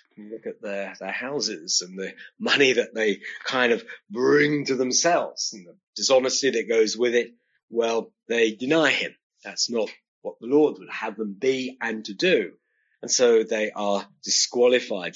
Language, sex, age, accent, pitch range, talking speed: English, male, 40-59, British, 110-155 Hz, 170 wpm